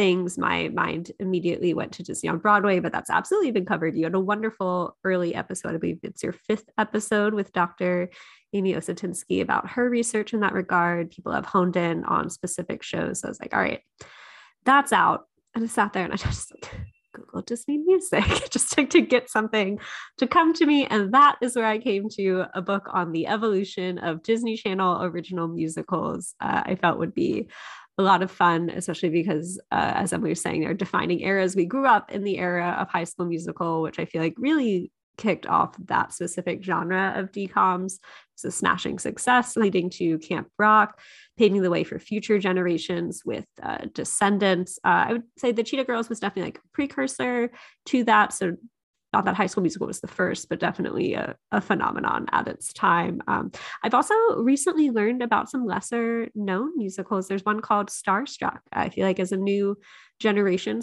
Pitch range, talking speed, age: 180-225 Hz, 195 wpm, 20-39